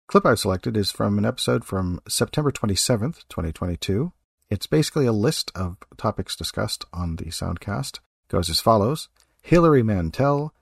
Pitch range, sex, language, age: 90-125 Hz, male, English, 50-69